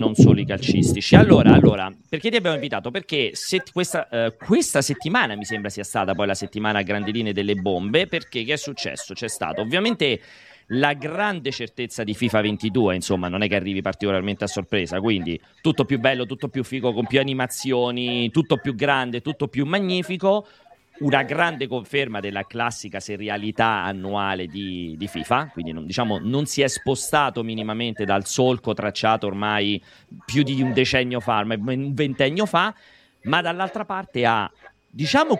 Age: 30-49